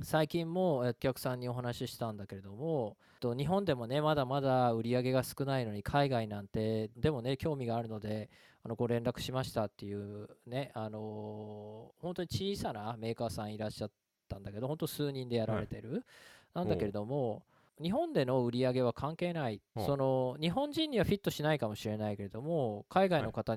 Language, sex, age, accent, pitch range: Japanese, male, 20-39, native, 110-155 Hz